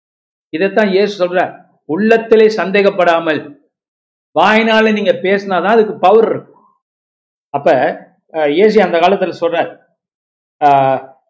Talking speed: 85 wpm